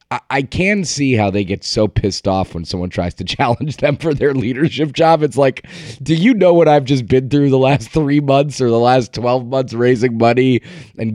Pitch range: 100-130 Hz